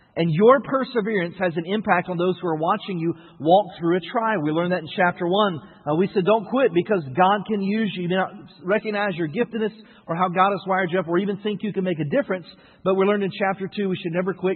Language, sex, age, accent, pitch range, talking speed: English, male, 40-59, American, 180-215 Hz, 260 wpm